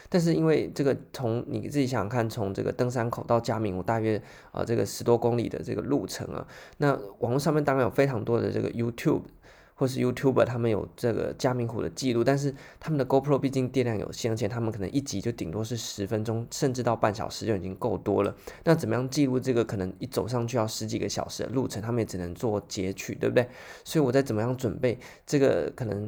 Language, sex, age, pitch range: Chinese, male, 20-39, 105-130 Hz